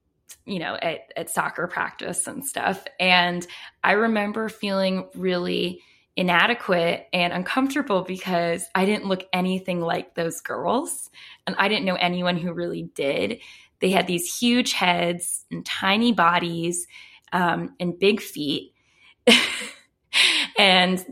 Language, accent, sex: English, American, female